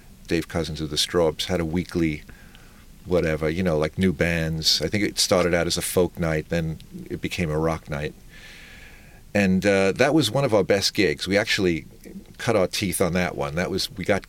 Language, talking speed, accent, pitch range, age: English, 210 wpm, American, 85-100 Hz, 40-59